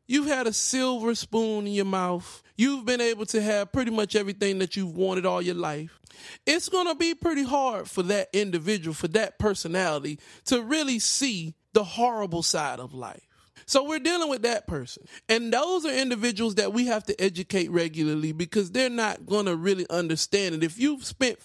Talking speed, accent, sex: 195 wpm, American, male